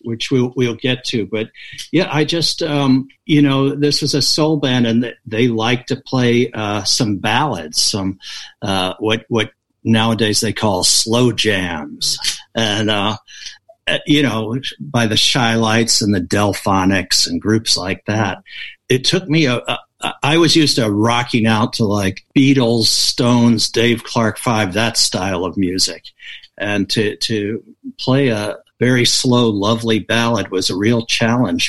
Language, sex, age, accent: English, male, 60-79, American